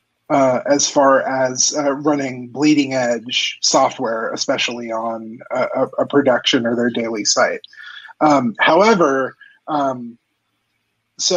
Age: 30-49